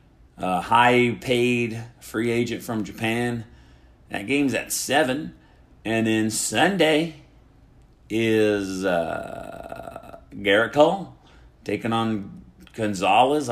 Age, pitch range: 40-59, 100-130 Hz